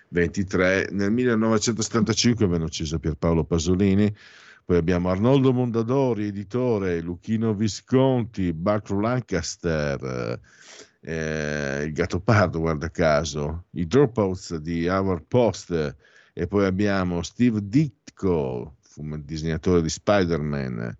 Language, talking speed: Italian, 100 wpm